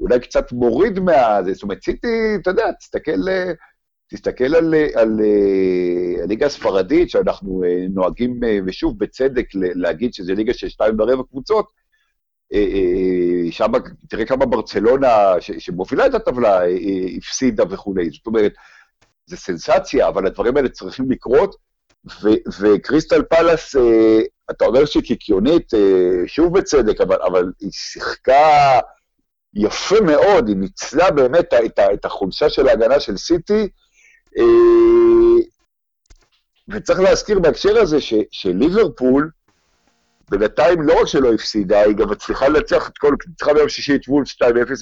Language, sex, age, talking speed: Hebrew, male, 50-69, 120 wpm